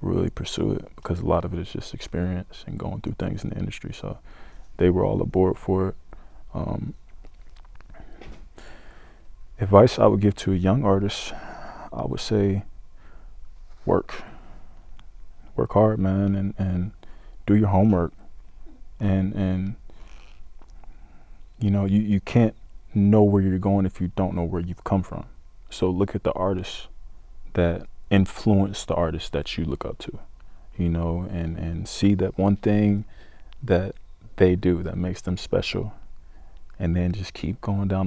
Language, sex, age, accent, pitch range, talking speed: English, male, 20-39, American, 80-100 Hz, 160 wpm